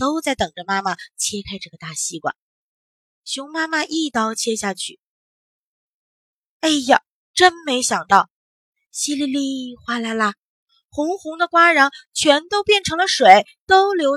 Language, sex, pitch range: Chinese, female, 200-305 Hz